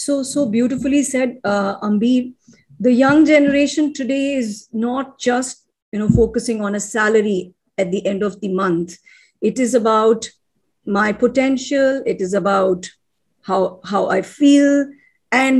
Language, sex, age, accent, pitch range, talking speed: English, female, 50-69, Indian, 195-270 Hz, 145 wpm